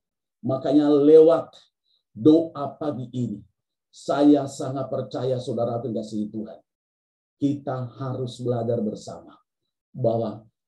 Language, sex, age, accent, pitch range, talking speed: Indonesian, male, 50-69, native, 115-160 Hz, 85 wpm